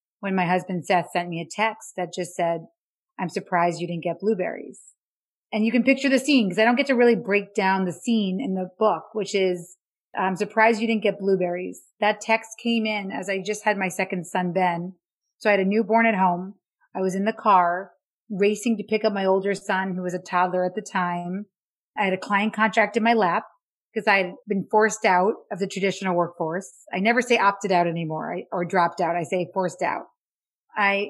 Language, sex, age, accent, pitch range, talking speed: English, female, 30-49, American, 180-215 Hz, 220 wpm